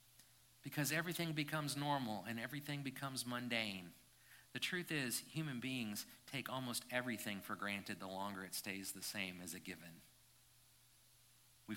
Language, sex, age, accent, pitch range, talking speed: English, male, 50-69, American, 100-125 Hz, 145 wpm